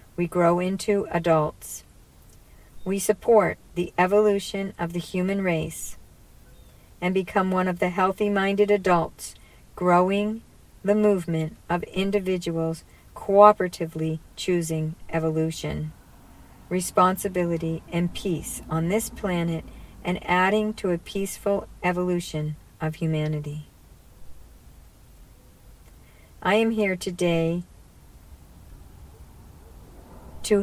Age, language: 50-69, English